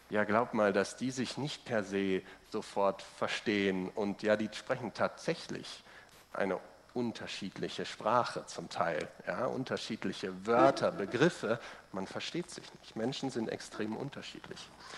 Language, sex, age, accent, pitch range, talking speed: German, male, 40-59, German, 105-140 Hz, 130 wpm